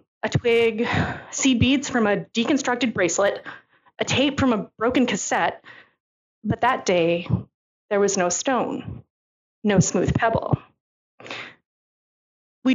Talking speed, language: 120 wpm, English